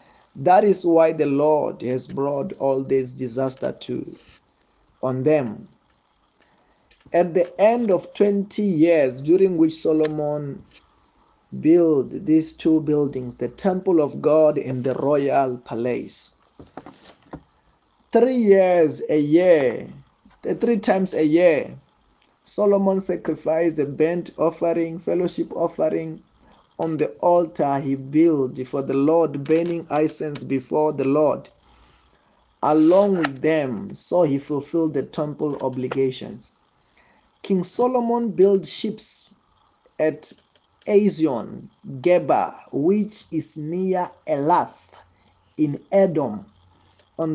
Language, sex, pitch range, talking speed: English, male, 135-175 Hz, 110 wpm